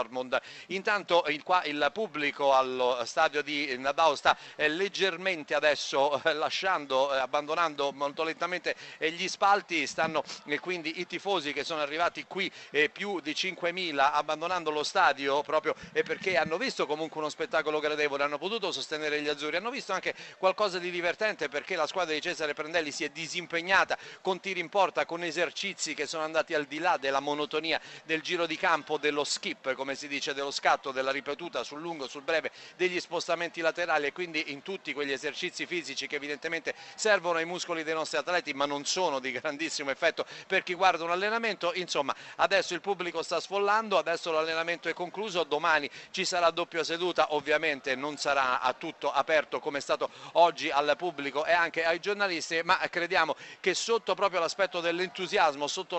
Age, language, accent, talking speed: 40-59, Italian, native, 180 wpm